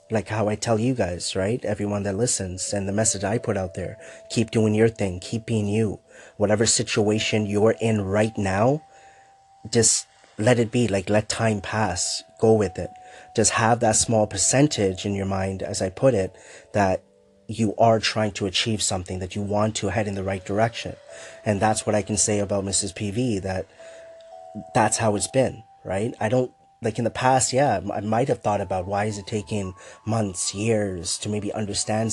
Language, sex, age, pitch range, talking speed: English, male, 30-49, 100-115 Hz, 195 wpm